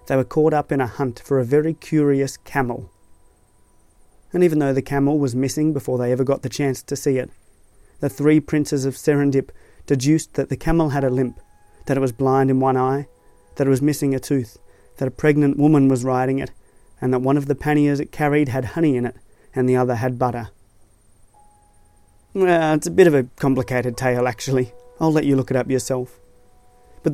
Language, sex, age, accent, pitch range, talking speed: English, male, 30-49, Australian, 125-145 Hz, 210 wpm